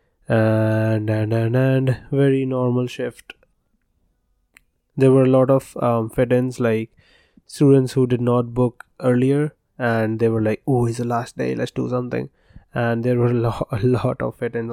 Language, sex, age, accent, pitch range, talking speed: English, male, 20-39, Indian, 115-130 Hz, 170 wpm